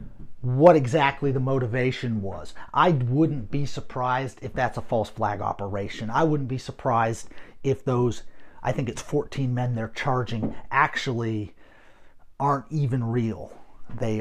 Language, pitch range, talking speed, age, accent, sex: English, 125-160 Hz, 140 wpm, 30-49, American, male